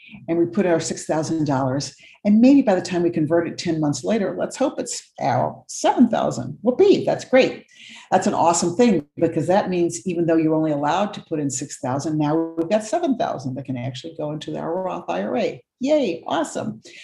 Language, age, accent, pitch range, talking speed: English, 60-79, American, 140-175 Hz, 210 wpm